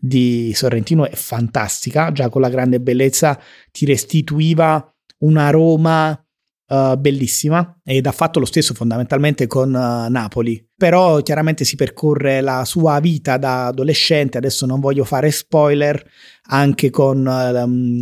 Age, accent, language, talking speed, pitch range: 30-49, native, Italian, 135 wpm, 125-155 Hz